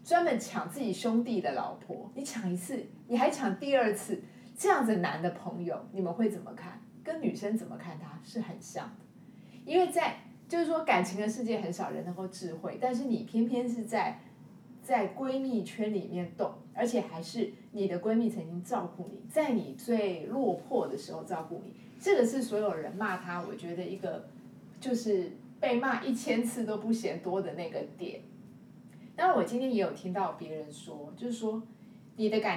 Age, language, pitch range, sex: 30-49, Chinese, 190-240 Hz, female